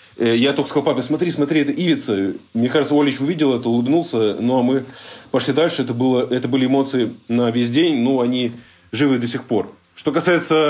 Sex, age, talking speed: male, 20-39, 210 wpm